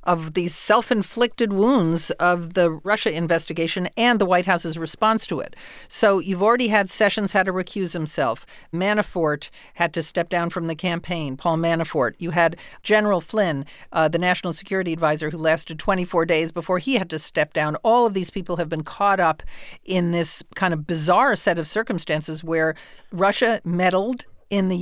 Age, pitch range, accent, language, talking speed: 50-69, 165-210 Hz, American, English, 180 wpm